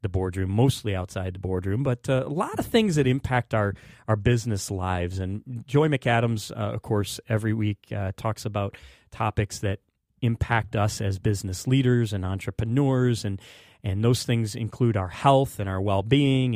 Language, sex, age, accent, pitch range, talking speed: English, male, 30-49, American, 100-130 Hz, 175 wpm